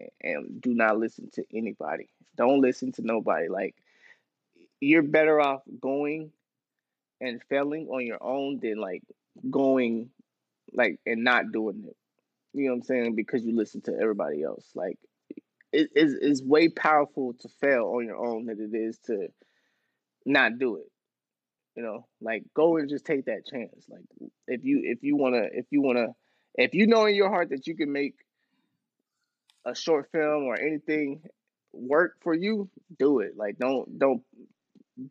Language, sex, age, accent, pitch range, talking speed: English, male, 20-39, American, 130-210 Hz, 165 wpm